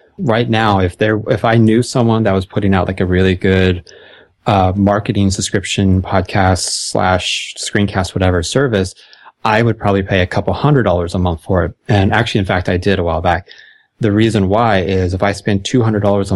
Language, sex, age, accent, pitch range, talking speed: English, male, 20-39, American, 95-105 Hz, 195 wpm